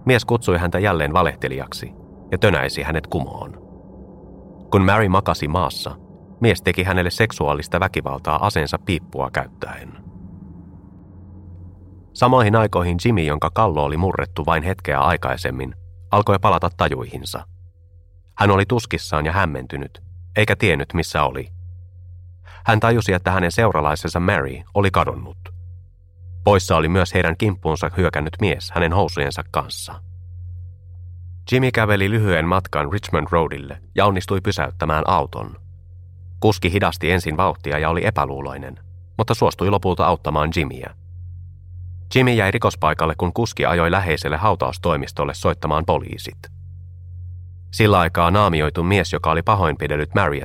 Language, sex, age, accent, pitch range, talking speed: Finnish, male, 30-49, native, 85-100 Hz, 120 wpm